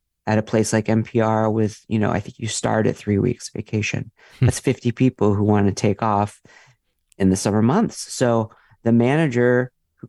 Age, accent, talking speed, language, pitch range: 40-59, American, 190 wpm, English, 95-125 Hz